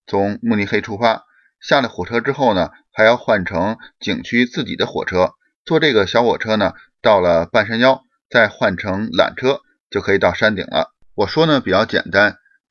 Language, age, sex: Chinese, 30-49, male